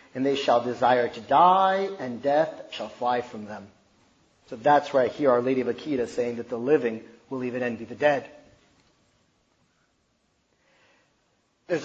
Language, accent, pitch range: English, American, 135-165 Hz